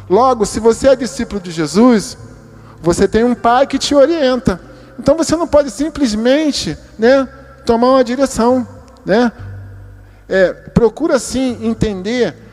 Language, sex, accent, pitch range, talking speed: Portuguese, male, Brazilian, 155-235 Hz, 130 wpm